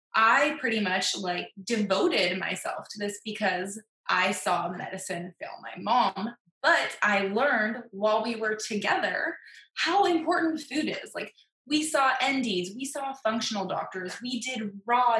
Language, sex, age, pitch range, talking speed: English, female, 20-39, 205-265 Hz, 145 wpm